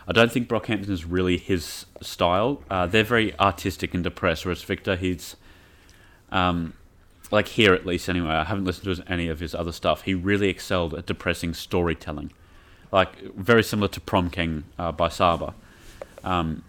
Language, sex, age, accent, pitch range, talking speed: English, male, 30-49, Australian, 85-95 Hz, 175 wpm